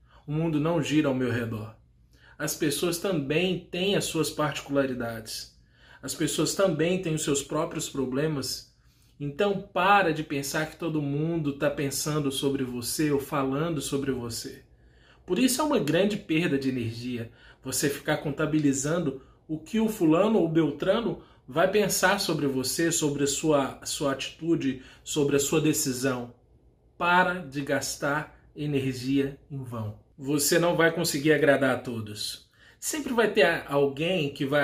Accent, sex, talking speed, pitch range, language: Brazilian, male, 150 wpm, 135-165 Hz, Portuguese